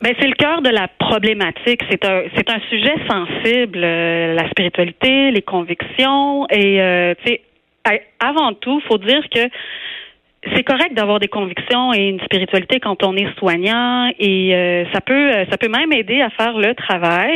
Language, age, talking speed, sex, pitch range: French, 30-49, 170 wpm, female, 185-240 Hz